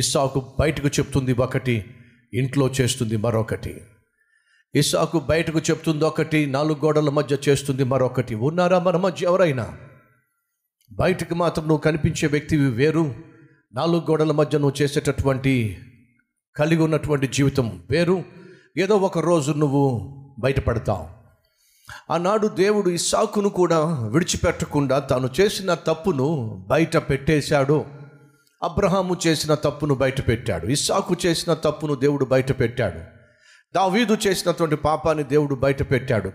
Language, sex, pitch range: Telugu, male, 135-165 Hz